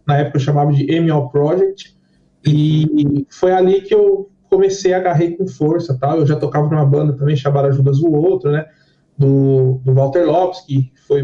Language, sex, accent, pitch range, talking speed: Portuguese, male, Brazilian, 155-210 Hz, 190 wpm